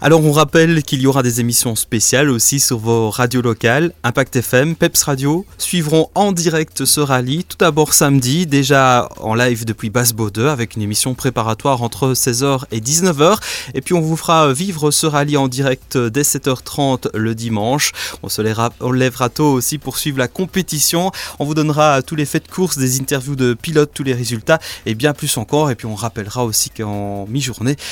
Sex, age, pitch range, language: male, 20-39, 120-150 Hz, French